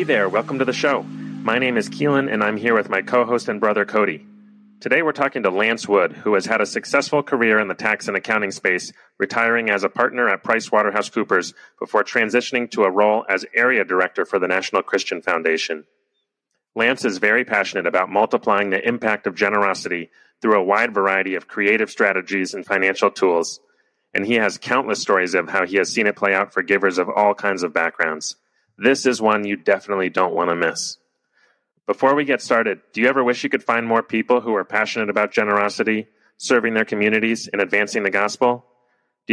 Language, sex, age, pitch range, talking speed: English, male, 30-49, 100-120 Hz, 200 wpm